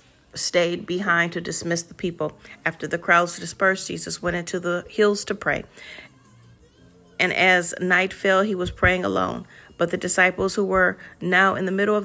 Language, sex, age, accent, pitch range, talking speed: English, female, 40-59, American, 175-205 Hz, 175 wpm